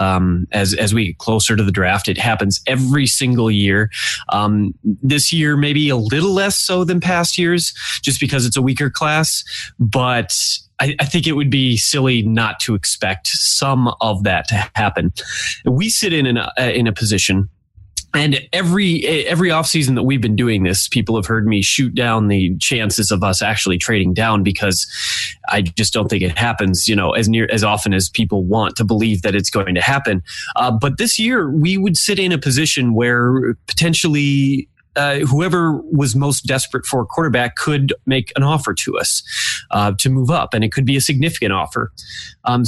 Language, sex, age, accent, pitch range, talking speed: English, male, 20-39, American, 105-140 Hz, 195 wpm